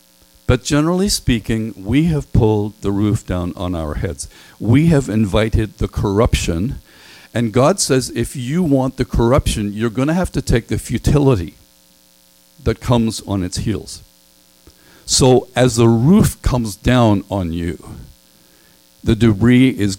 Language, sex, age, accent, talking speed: English, male, 50-69, American, 145 wpm